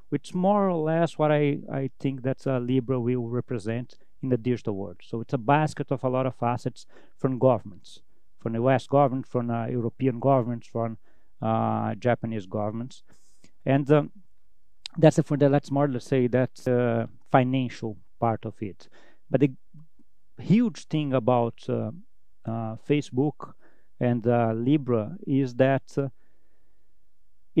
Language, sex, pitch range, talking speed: English, male, 120-145 Hz, 155 wpm